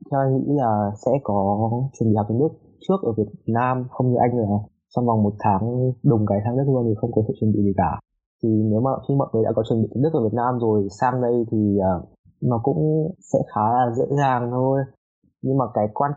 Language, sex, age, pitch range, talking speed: Vietnamese, male, 20-39, 110-130 Hz, 240 wpm